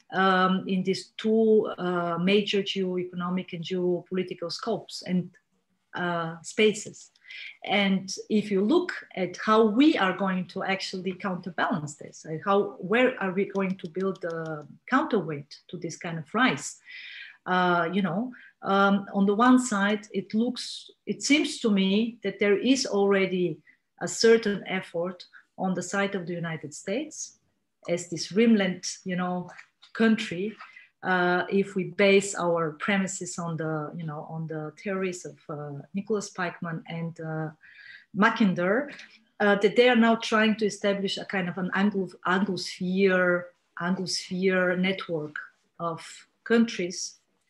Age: 40-59